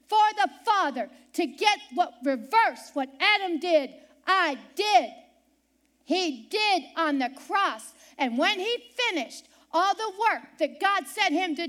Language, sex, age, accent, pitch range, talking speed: English, female, 50-69, American, 285-370 Hz, 150 wpm